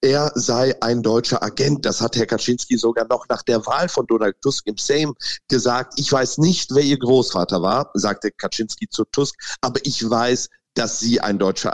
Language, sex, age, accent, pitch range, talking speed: German, male, 50-69, German, 105-130 Hz, 195 wpm